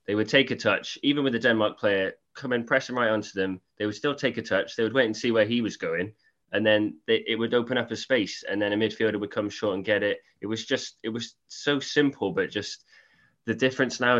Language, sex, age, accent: English, male, 20-39, British